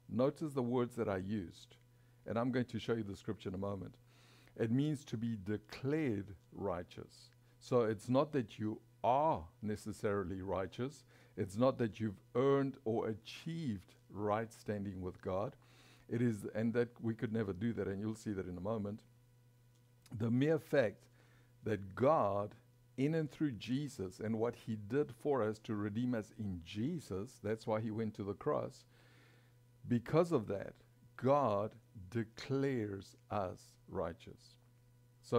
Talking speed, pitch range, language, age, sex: 160 wpm, 105-125 Hz, English, 60-79, male